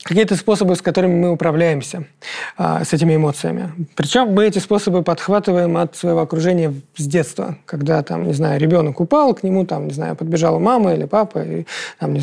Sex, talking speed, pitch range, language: male, 180 wpm, 160-200 Hz, Russian